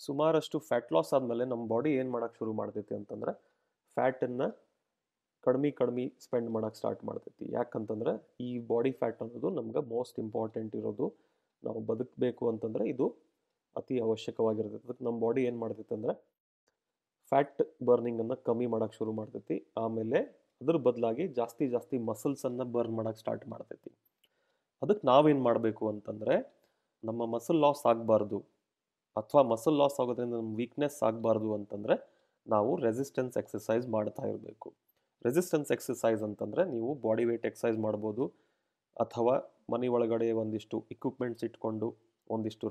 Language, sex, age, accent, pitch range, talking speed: Kannada, male, 30-49, native, 110-130 Hz, 130 wpm